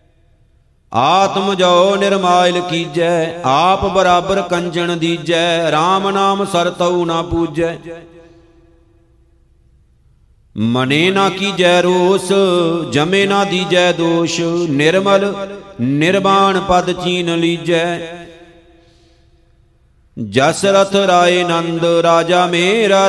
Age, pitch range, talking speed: 50-69, 165-180 Hz, 85 wpm